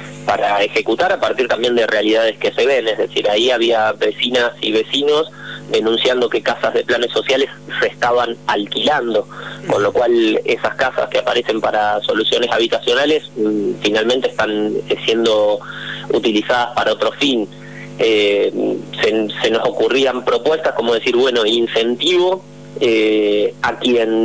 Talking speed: 140 wpm